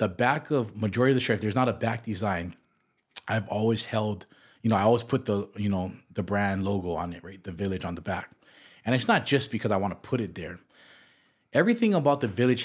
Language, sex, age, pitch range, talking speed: English, male, 30-49, 105-125 Hz, 230 wpm